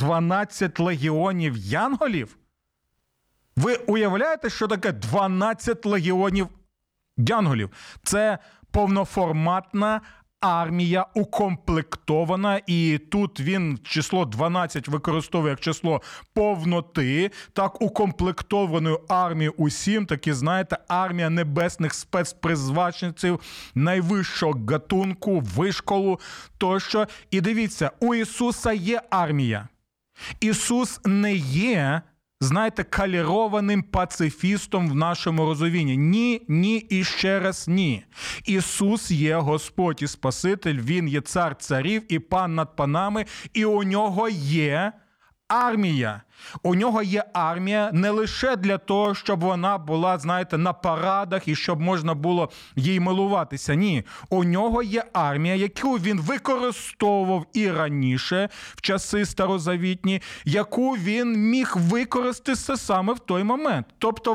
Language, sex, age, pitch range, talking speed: Ukrainian, male, 40-59, 165-210 Hz, 110 wpm